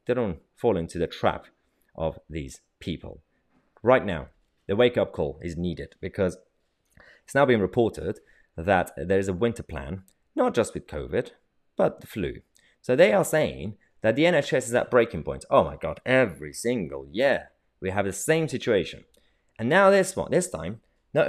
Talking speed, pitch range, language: 180 wpm, 85-130 Hz, English